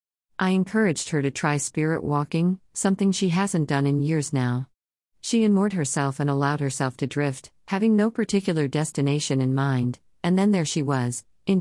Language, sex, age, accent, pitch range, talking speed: English, female, 50-69, American, 130-175 Hz, 175 wpm